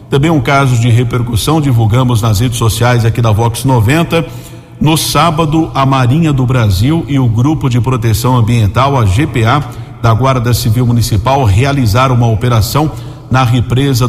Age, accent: 50-69, Brazilian